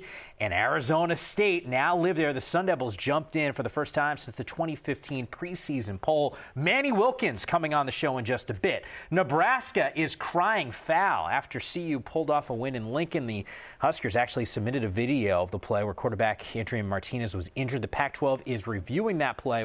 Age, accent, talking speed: 30-49, American, 190 wpm